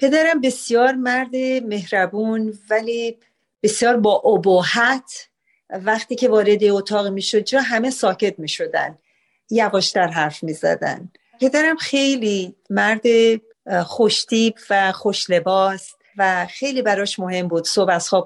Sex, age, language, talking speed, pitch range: female, 40-59, Persian, 120 wpm, 190-240 Hz